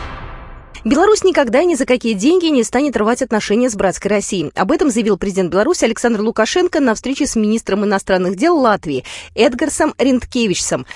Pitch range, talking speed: 205-310 Hz, 160 wpm